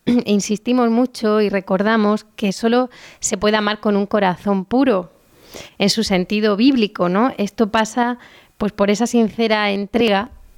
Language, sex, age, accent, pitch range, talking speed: Spanish, female, 30-49, Spanish, 205-245 Hz, 140 wpm